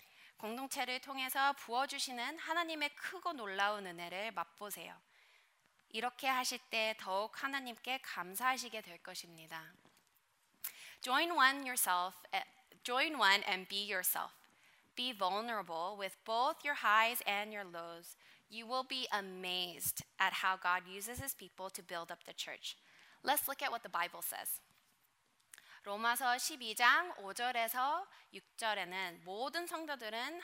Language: Korean